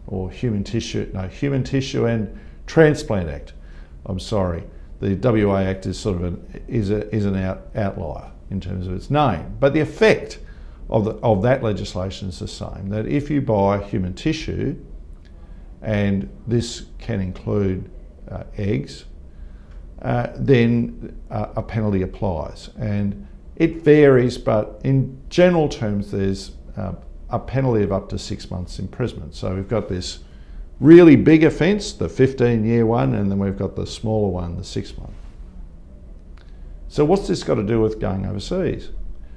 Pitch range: 75-115 Hz